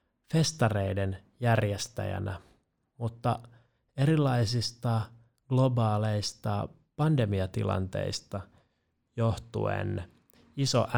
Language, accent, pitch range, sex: Finnish, native, 105-130 Hz, male